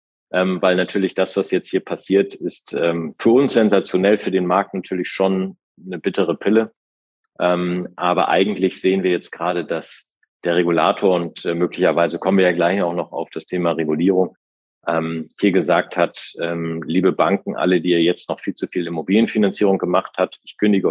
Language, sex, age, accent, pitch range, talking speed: German, male, 40-59, German, 85-105 Hz, 165 wpm